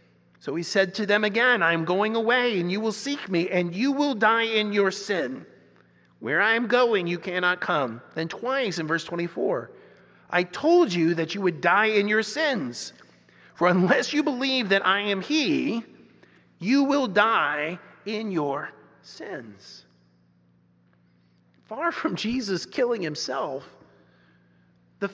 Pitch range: 185-280 Hz